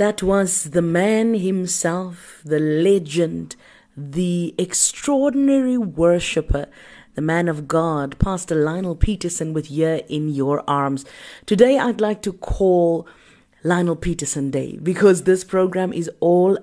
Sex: female